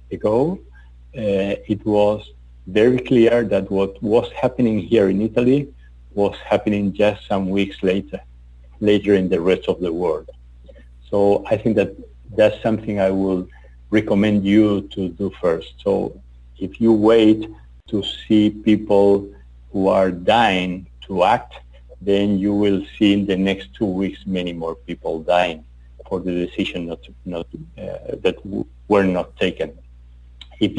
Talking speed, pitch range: 140 wpm, 85-105 Hz